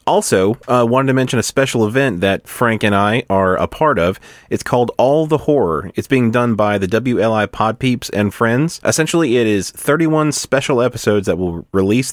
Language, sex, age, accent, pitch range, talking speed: English, male, 30-49, American, 100-135 Hz, 195 wpm